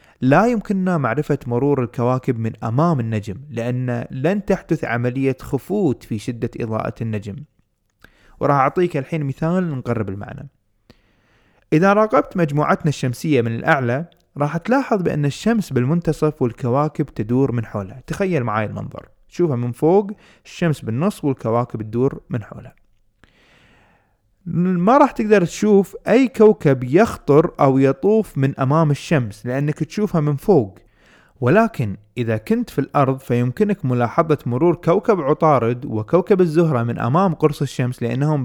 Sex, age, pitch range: male, 30-49, 120-170 Hz